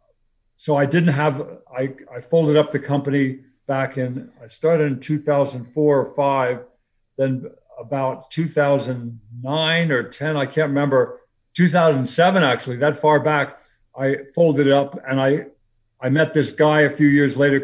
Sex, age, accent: male, 60-79, American